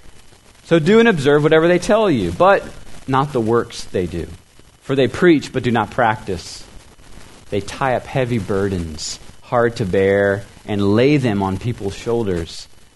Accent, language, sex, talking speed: American, English, male, 160 wpm